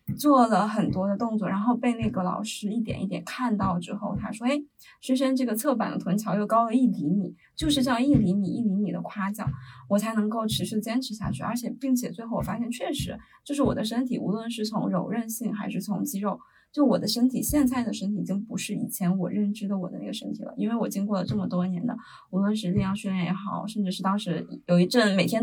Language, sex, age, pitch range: Chinese, female, 20-39, 195-245 Hz